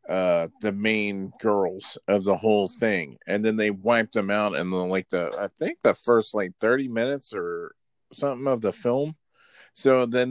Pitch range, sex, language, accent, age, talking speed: 105-125 Hz, male, English, American, 40-59, 185 wpm